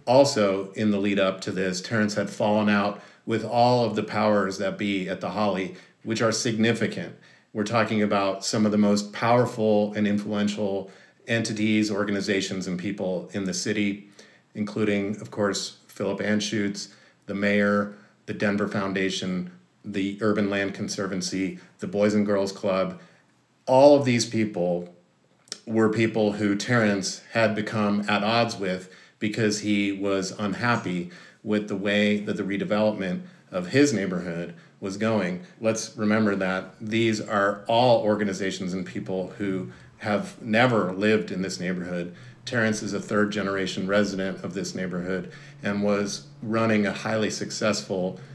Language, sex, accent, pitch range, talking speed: English, male, American, 100-110 Hz, 145 wpm